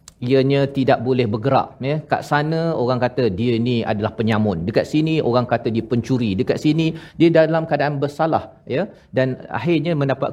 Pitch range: 120-155 Hz